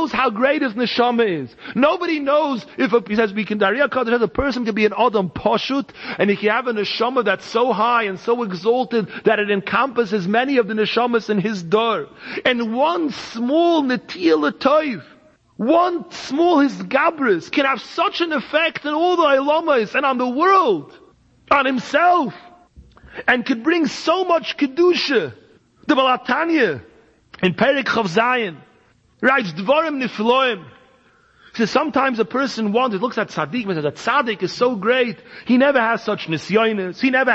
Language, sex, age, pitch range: English, male, 40-59, 220-295 Hz